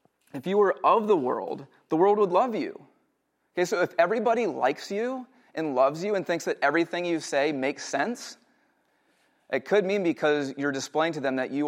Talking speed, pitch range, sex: 195 wpm, 130-165 Hz, male